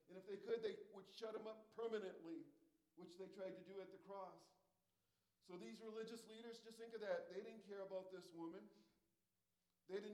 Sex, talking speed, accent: male, 200 wpm, American